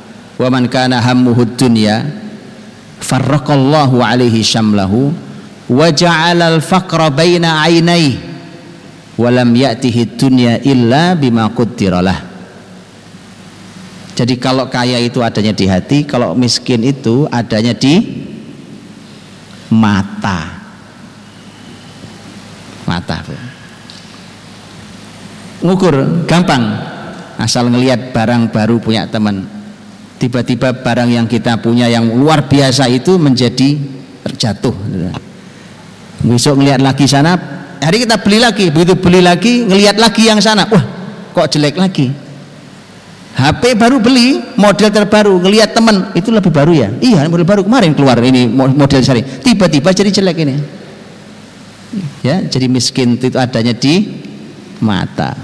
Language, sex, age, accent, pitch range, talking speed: English, male, 40-59, Indonesian, 125-185 Hz, 110 wpm